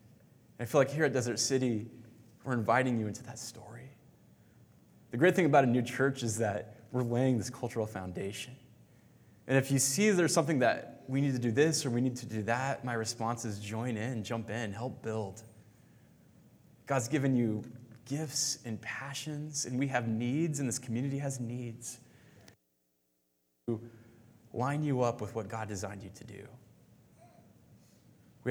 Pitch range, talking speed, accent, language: 110-135 Hz, 170 wpm, American, English